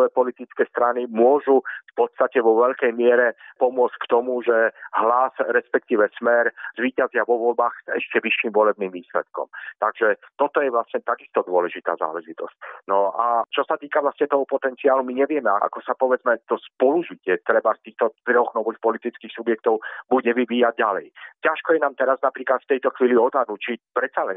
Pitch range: 115-135 Hz